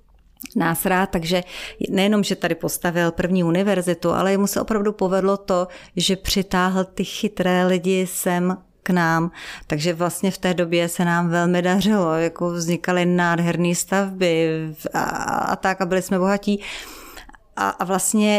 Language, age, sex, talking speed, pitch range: Czech, 30-49, female, 155 wpm, 180-200 Hz